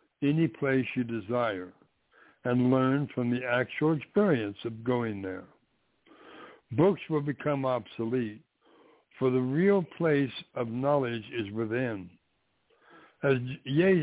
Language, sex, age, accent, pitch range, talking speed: English, male, 60-79, American, 120-145 Hz, 115 wpm